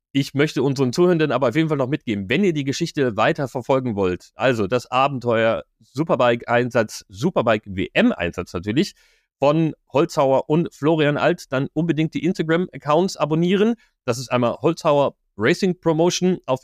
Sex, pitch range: male, 120-160 Hz